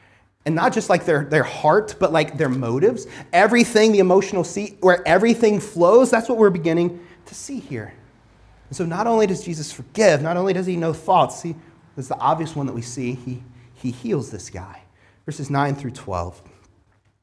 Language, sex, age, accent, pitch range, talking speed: English, male, 30-49, American, 115-195 Hz, 190 wpm